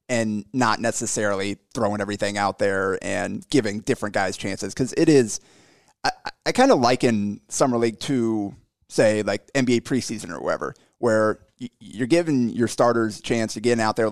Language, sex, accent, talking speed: English, male, American, 170 wpm